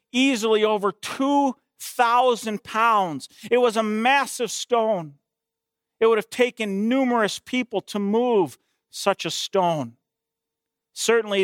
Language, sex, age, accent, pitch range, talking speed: English, male, 40-59, American, 210-285 Hz, 110 wpm